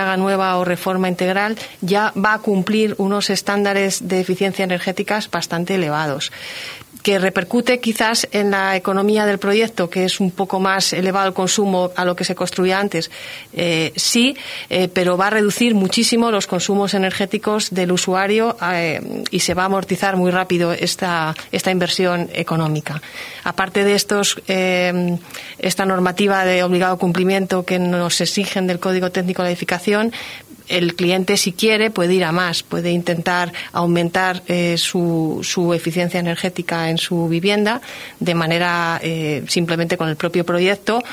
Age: 30-49